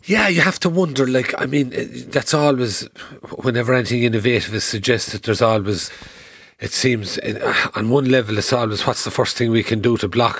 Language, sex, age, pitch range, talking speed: English, male, 40-59, 110-135 Hz, 190 wpm